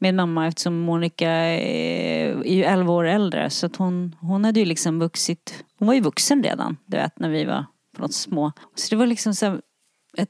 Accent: Swedish